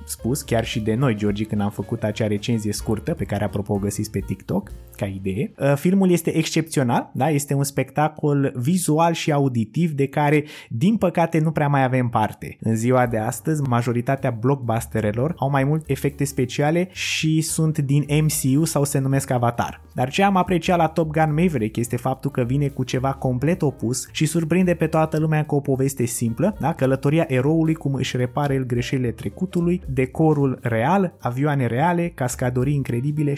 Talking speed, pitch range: 175 wpm, 120-155 Hz